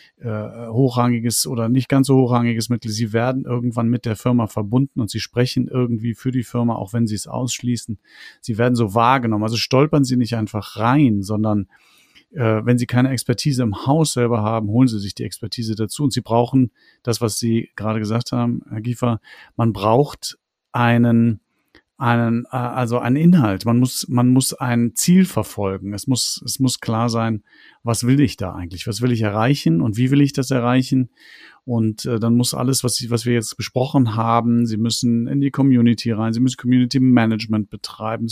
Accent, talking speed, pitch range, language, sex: German, 190 wpm, 110-130 Hz, German, male